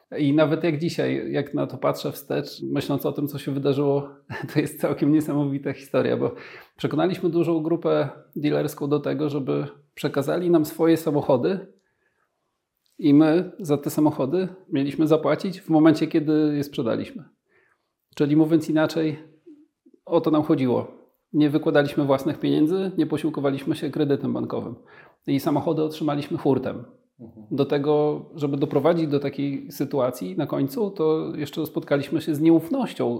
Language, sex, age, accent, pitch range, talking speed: Polish, male, 40-59, native, 140-165 Hz, 145 wpm